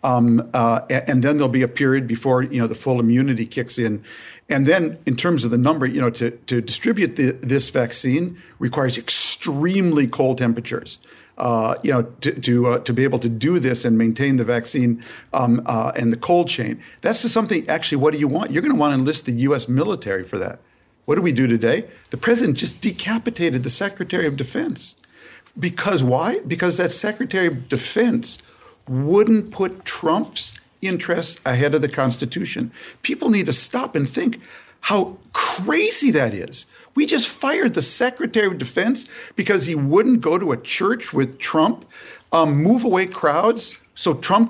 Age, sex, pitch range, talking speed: 50-69, male, 125-205 Hz, 185 wpm